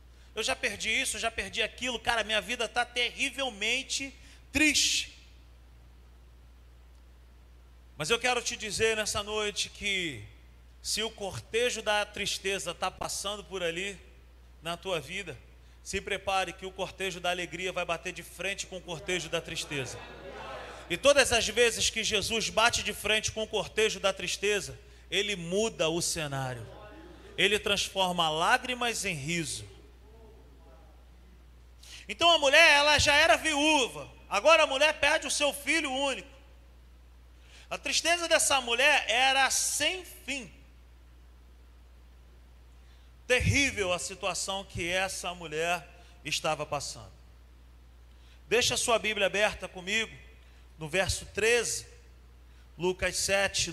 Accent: Brazilian